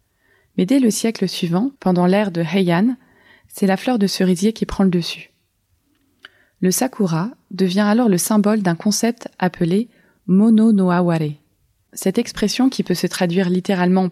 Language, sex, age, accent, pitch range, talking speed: French, female, 20-39, French, 180-210 Hz, 165 wpm